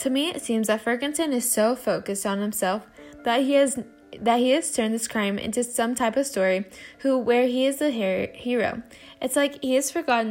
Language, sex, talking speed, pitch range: English, female, 210 wpm, 205-260 Hz